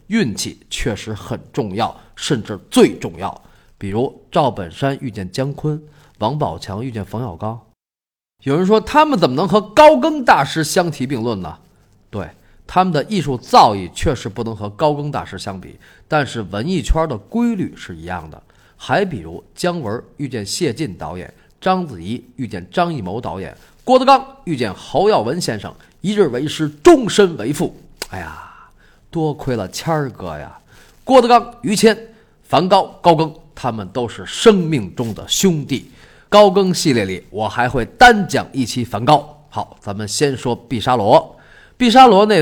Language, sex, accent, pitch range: Chinese, male, native, 110-180 Hz